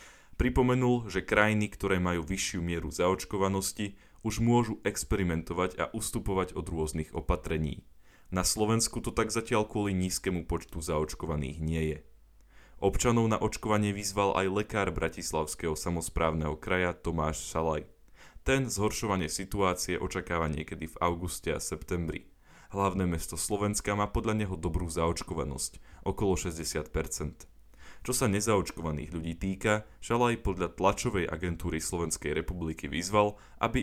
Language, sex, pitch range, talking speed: Slovak, male, 80-105 Hz, 130 wpm